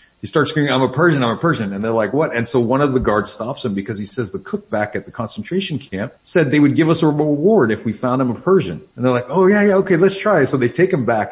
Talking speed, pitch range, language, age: 305 wpm, 110-150 Hz, English, 40-59